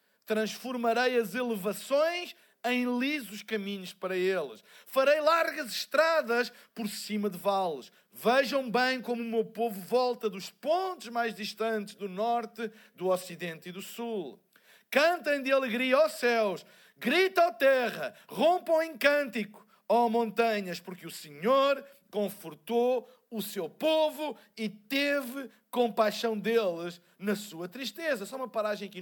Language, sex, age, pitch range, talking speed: Portuguese, male, 50-69, 205-270 Hz, 130 wpm